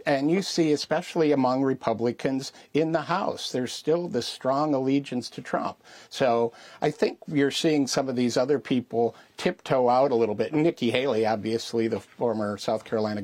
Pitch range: 115-140 Hz